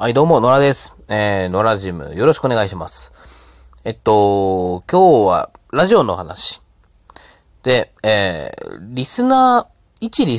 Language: Japanese